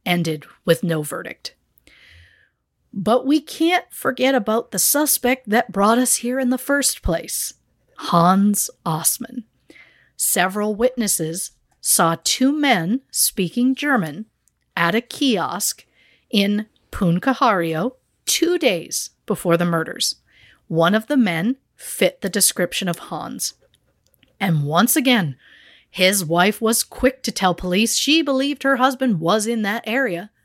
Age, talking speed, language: 50-69, 130 wpm, English